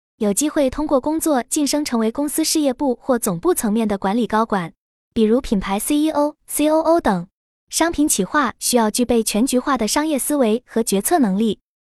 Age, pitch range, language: 20-39, 220-295 Hz, Chinese